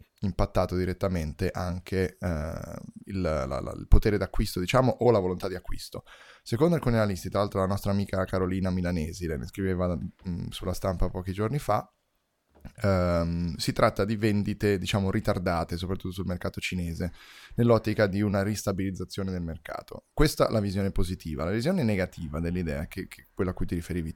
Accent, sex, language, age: native, male, Italian, 10-29